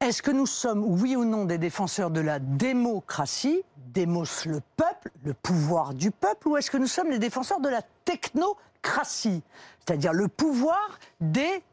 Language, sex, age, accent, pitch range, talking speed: French, female, 50-69, French, 175-275 Hz, 170 wpm